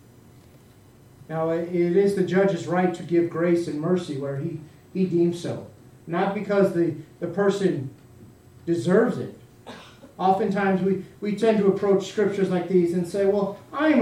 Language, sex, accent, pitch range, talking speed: English, male, American, 160-225 Hz, 155 wpm